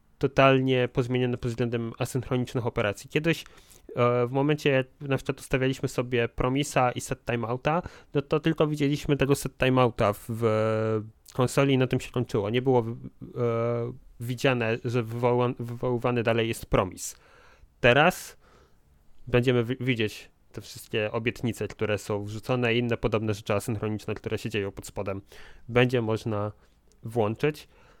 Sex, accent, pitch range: male, native, 110-135 Hz